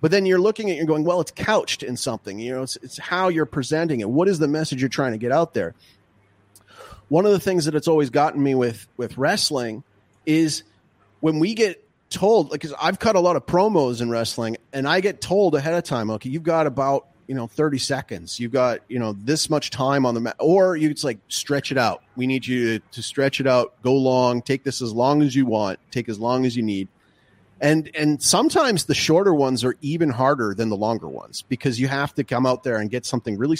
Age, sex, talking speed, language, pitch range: 30-49, male, 240 wpm, English, 120-160 Hz